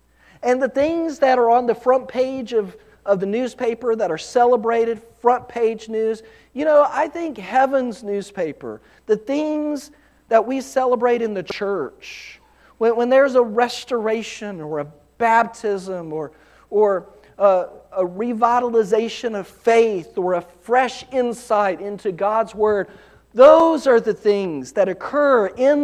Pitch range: 190-250 Hz